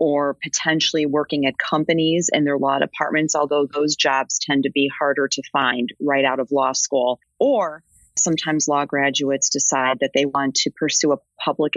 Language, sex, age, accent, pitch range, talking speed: English, female, 30-49, American, 135-155 Hz, 180 wpm